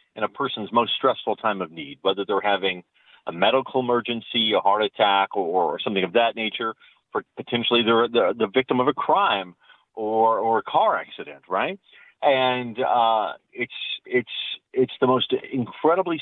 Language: English